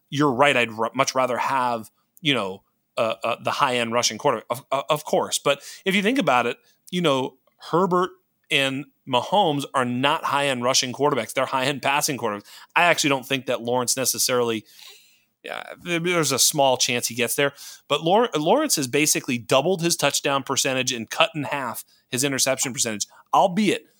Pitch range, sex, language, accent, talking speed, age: 130-160 Hz, male, English, American, 180 wpm, 30-49